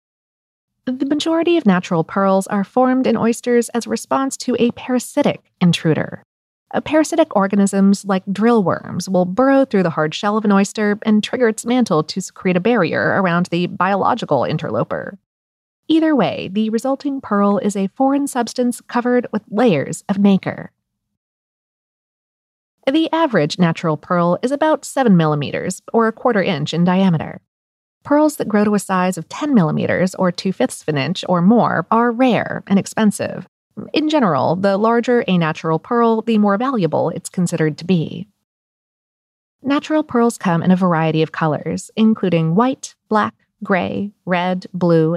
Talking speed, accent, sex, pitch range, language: 155 wpm, American, female, 175-240 Hz, English